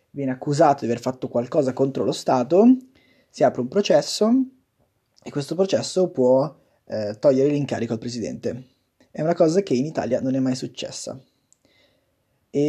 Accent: native